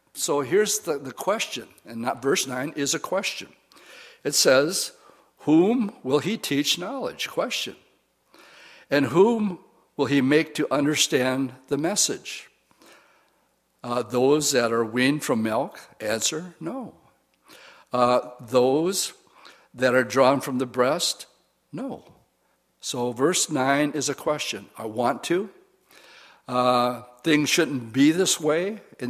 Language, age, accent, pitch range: English, 60-79, American, 125-155 Hz